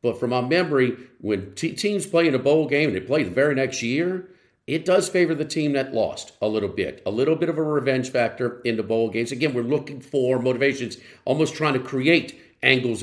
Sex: male